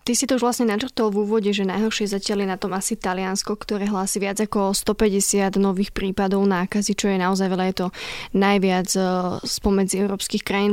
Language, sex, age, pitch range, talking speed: Slovak, female, 20-39, 195-220 Hz, 190 wpm